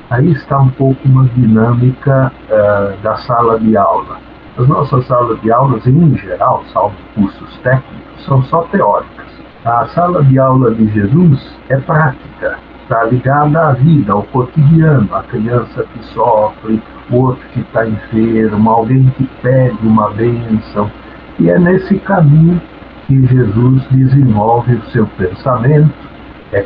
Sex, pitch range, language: male, 115-150 Hz, Portuguese